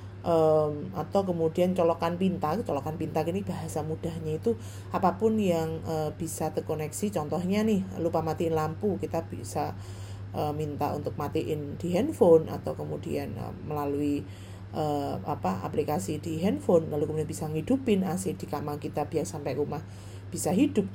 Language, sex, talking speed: Indonesian, female, 130 wpm